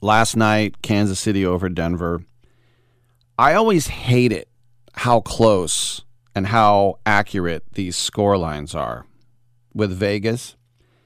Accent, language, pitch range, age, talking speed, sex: American, English, 100-120 Hz, 40-59, 115 wpm, male